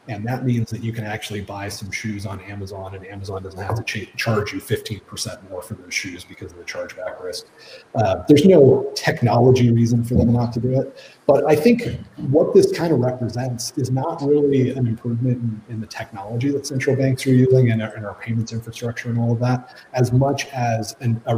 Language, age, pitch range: English, 30-49, 110-130 Hz